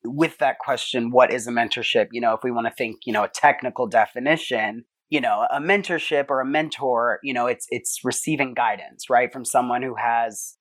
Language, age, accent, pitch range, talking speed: English, 30-49, American, 120-145 Hz, 210 wpm